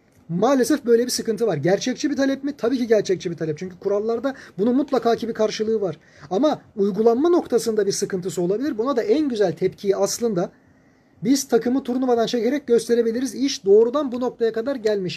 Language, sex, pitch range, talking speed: Turkish, male, 195-250 Hz, 180 wpm